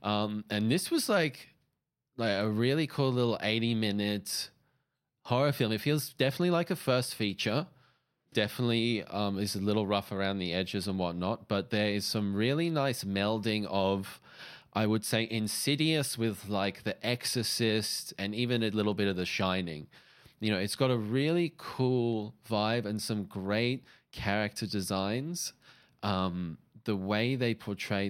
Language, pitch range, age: English, 95-115 Hz, 20-39